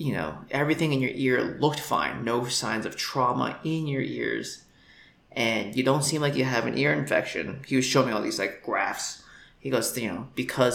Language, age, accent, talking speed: English, 20-39, American, 210 wpm